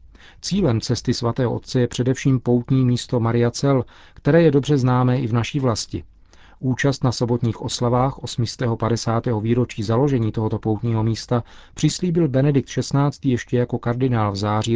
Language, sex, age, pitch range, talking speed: Czech, male, 40-59, 110-135 Hz, 145 wpm